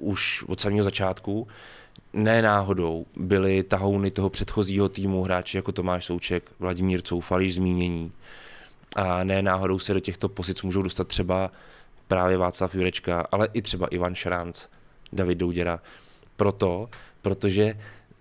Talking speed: 130 wpm